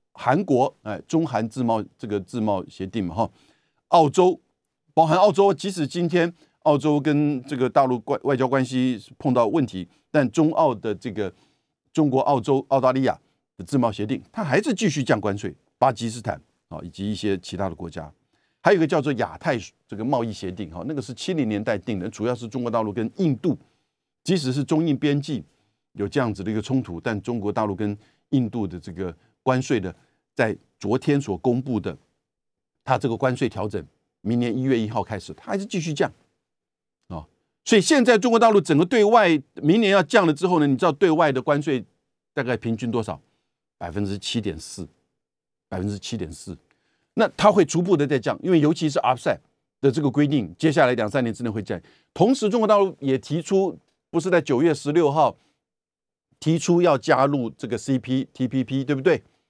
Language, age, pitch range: Chinese, 50-69, 110-155 Hz